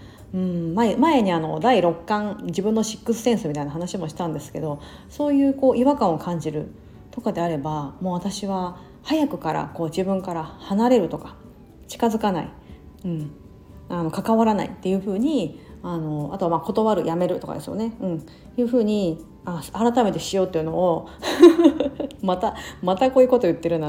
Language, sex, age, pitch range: Japanese, female, 40-59, 165-235 Hz